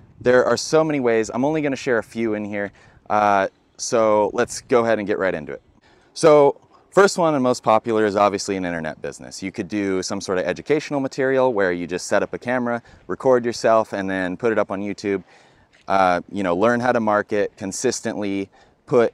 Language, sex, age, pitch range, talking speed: English, male, 30-49, 95-120 Hz, 215 wpm